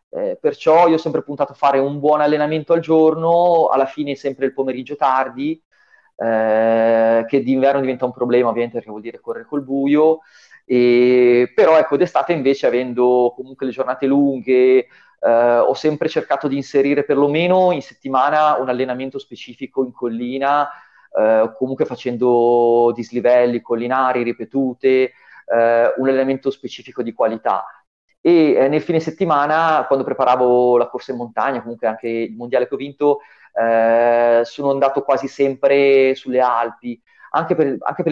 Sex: male